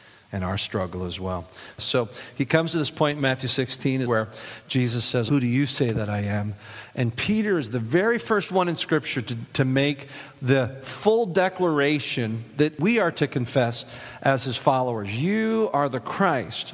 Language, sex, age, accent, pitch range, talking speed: English, male, 50-69, American, 125-170 Hz, 185 wpm